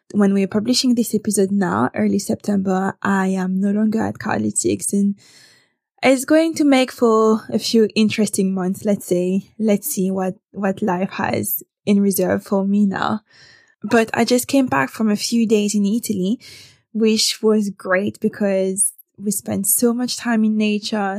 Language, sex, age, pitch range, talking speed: English, female, 20-39, 195-235 Hz, 165 wpm